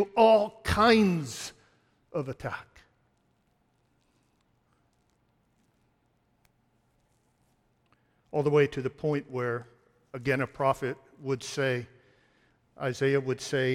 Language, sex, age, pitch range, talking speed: English, male, 60-79, 130-160 Hz, 85 wpm